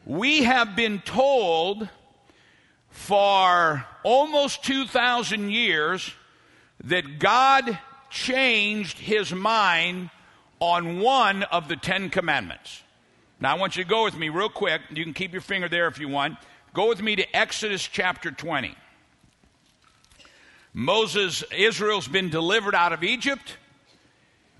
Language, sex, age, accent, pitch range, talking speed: English, male, 60-79, American, 170-230 Hz, 125 wpm